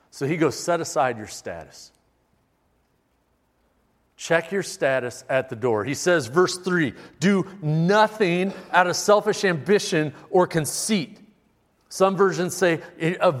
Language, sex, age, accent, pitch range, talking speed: English, male, 40-59, American, 135-180 Hz, 130 wpm